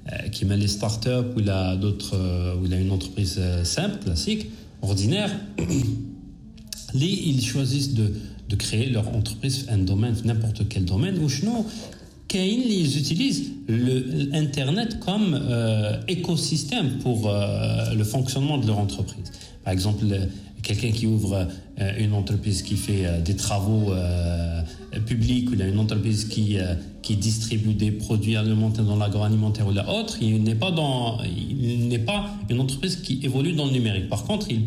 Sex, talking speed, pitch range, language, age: male, 160 wpm, 105-135 Hz, Arabic, 40-59